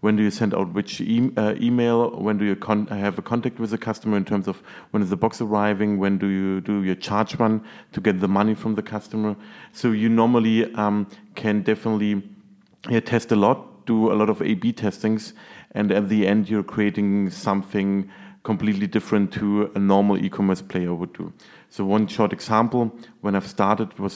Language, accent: English, German